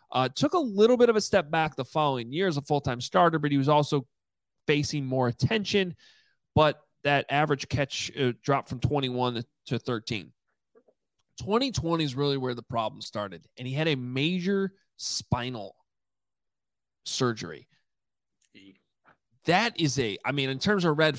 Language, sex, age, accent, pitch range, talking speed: English, male, 30-49, American, 130-170 Hz, 160 wpm